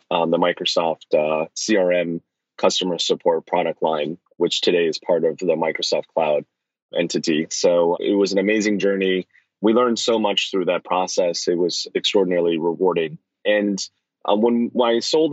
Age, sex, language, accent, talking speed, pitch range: 30-49, male, English, American, 160 wpm, 90-115 Hz